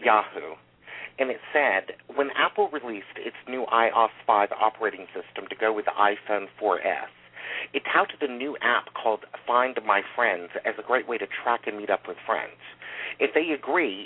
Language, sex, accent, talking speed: English, male, American, 180 wpm